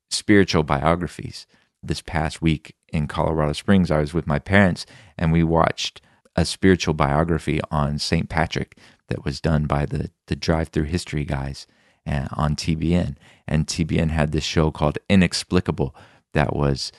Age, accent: 40-59, American